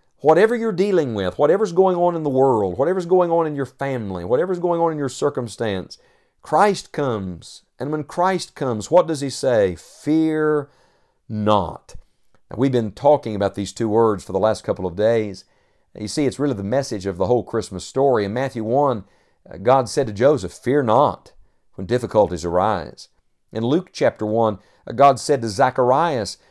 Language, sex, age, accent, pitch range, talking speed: English, male, 50-69, American, 105-145 Hz, 175 wpm